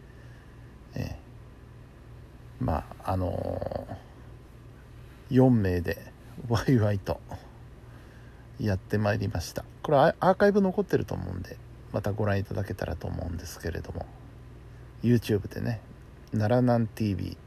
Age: 60-79